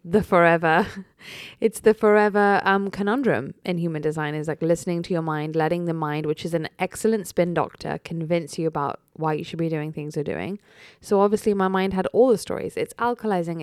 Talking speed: 205 wpm